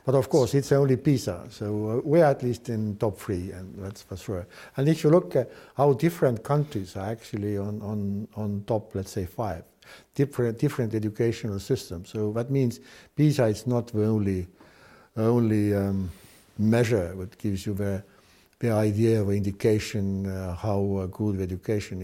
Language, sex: English, male